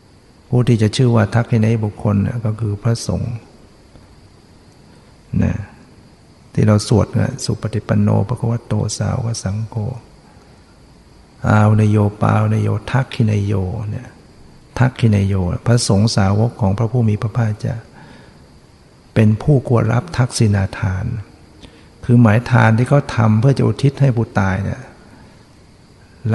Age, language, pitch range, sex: 60-79, Thai, 105-125 Hz, male